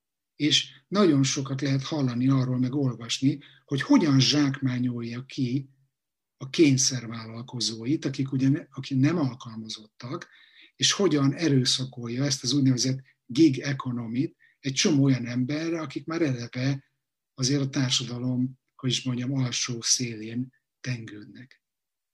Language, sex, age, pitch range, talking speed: Hungarian, male, 60-79, 125-145 Hz, 110 wpm